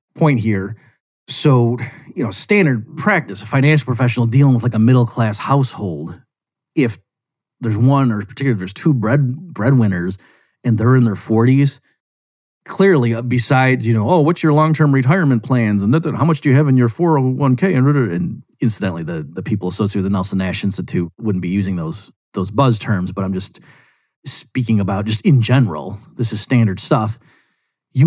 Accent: American